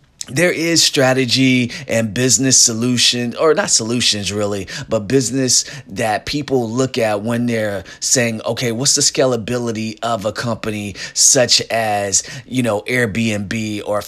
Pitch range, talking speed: 110-130 Hz, 135 wpm